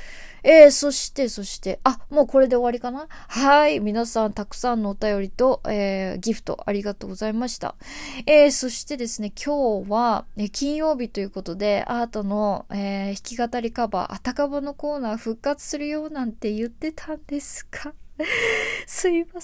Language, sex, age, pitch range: Japanese, female, 20-39, 210-270 Hz